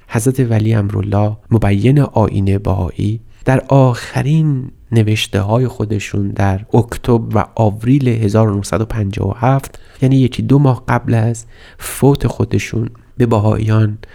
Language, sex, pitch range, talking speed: Persian, male, 100-120 Hz, 110 wpm